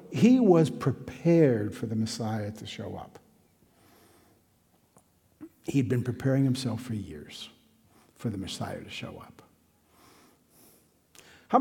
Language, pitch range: English, 120-200 Hz